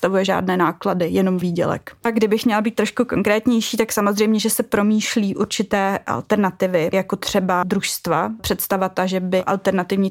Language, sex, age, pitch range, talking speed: Czech, female, 20-39, 185-205 Hz, 150 wpm